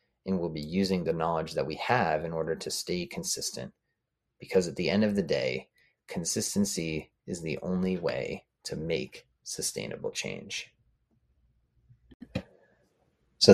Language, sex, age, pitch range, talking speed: English, male, 30-49, 85-110 Hz, 135 wpm